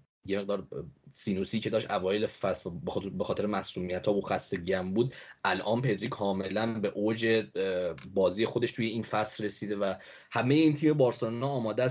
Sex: male